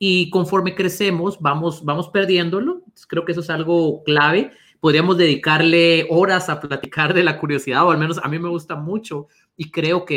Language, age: Spanish, 30-49